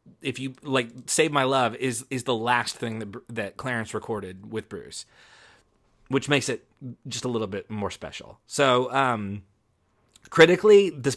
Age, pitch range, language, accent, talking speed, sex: 30-49, 110-135 Hz, English, American, 160 wpm, male